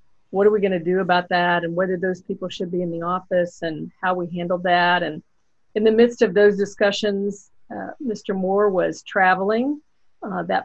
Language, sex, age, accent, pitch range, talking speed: English, female, 50-69, American, 185-220 Hz, 195 wpm